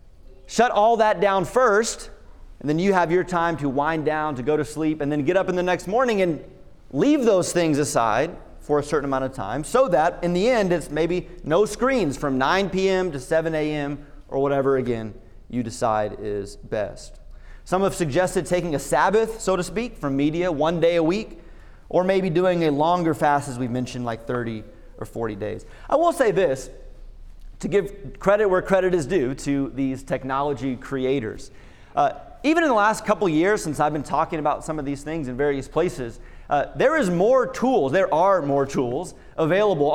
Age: 30-49